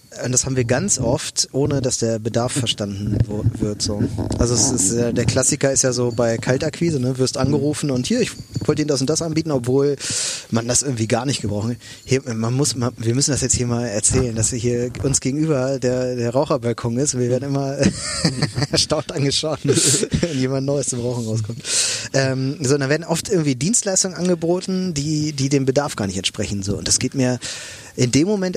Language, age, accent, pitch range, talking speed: German, 30-49, German, 120-145 Hz, 205 wpm